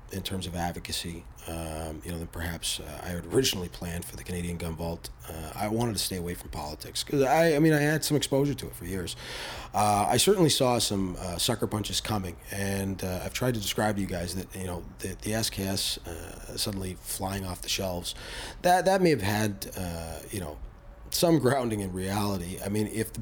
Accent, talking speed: American, 220 wpm